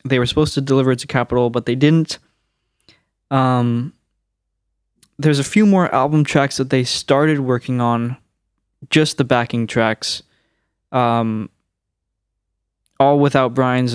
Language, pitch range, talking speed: English, 115-130 Hz, 135 wpm